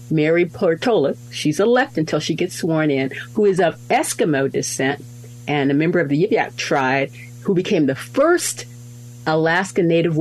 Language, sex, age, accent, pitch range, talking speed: English, female, 50-69, American, 125-190 Hz, 160 wpm